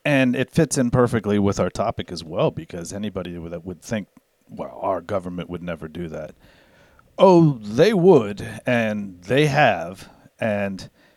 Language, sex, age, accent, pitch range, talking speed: English, male, 40-59, American, 95-120 Hz, 155 wpm